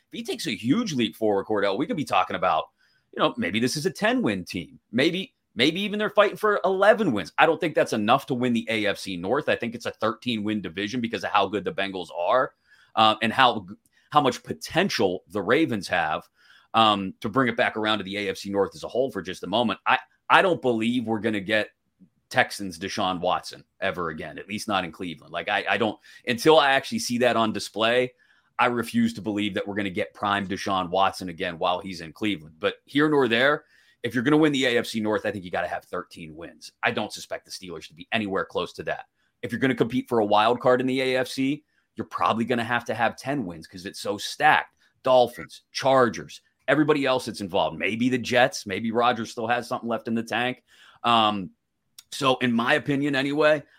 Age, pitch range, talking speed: 30-49, 105-130 Hz, 230 wpm